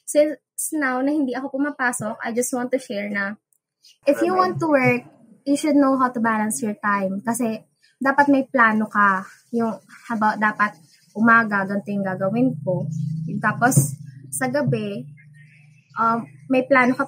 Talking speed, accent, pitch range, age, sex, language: 155 wpm, native, 215-280 Hz, 20-39, female, Filipino